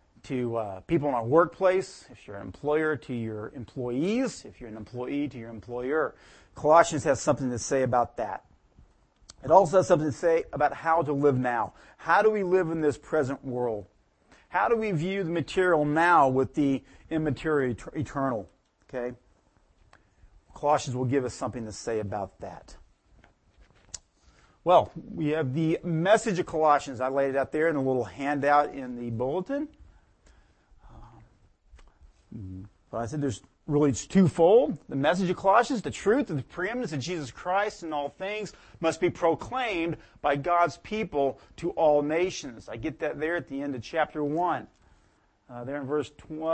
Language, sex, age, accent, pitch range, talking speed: English, male, 40-59, American, 120-165 Hz, 175 wpm